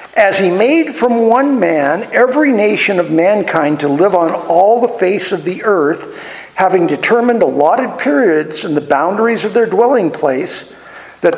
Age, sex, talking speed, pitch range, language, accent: 50-69, male, 165 wpm, 160-245 Hz, English, American